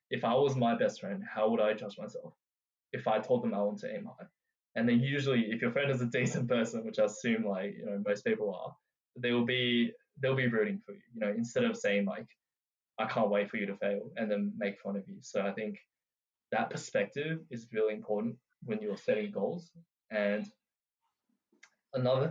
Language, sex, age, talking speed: English, male, 10-29, 215 wpm